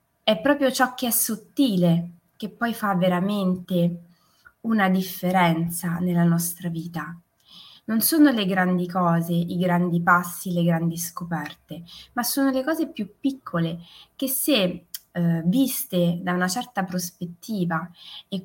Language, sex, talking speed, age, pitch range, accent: Italian, female, 135 wpm, 20-39, 175-225 Hz, native